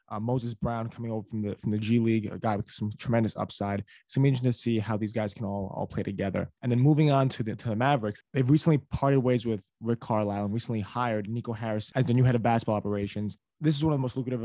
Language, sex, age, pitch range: English, male, 20-39, 105-120 Hz